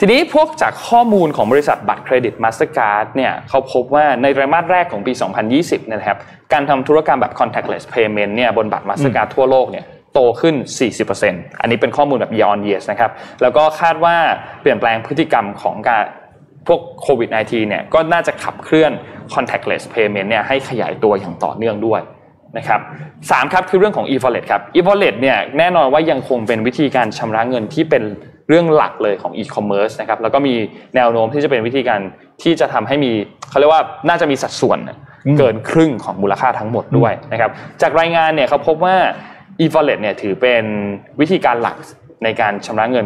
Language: Thai